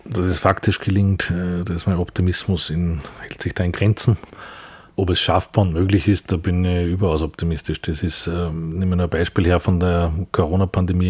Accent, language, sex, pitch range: Austrian, German, male, 85-95 Hz